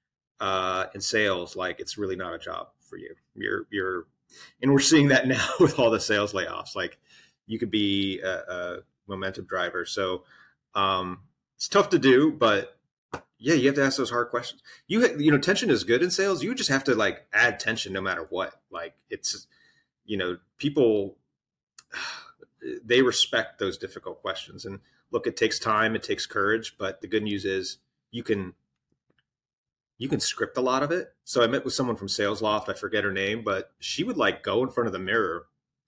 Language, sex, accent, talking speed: English, male, American, 195 wpm